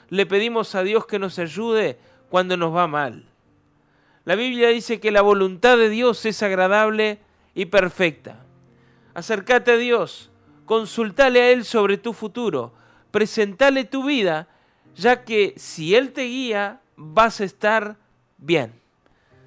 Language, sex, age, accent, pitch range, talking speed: Spanish, male, 40-59, Argentinian, 170-225 Hz, 140 wpm